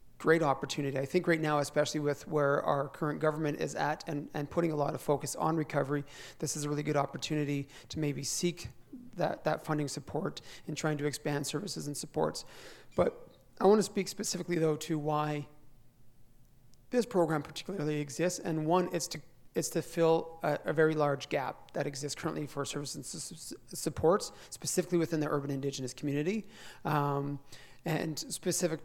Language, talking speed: English, 175 wpm